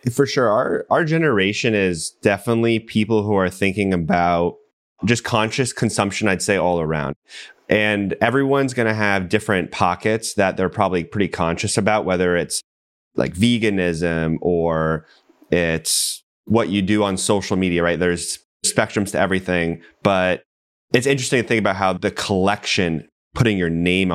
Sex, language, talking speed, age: male, English, 150 wpm, 30-49